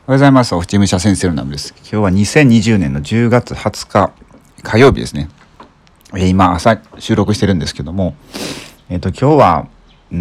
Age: 40-59